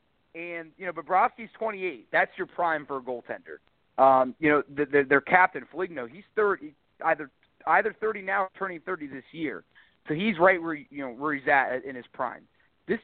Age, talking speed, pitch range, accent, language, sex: 40-59, 200 wpm, 145-195 Hz, American, English, male